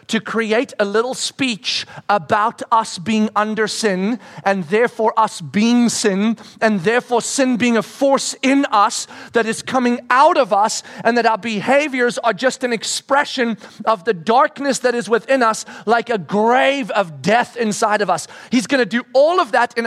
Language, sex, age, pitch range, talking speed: English, male, 40-59, 220-265 Hz, 180 wpm